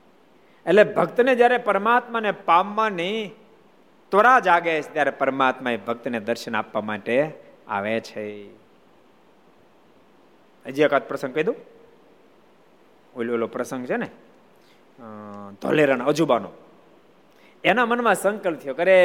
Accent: native